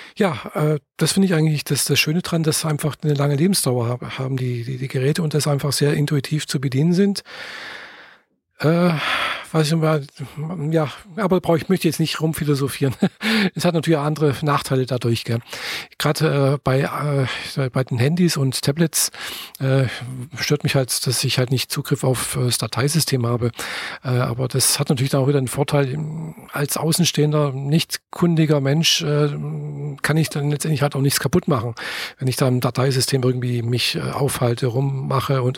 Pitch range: 135-160 Hz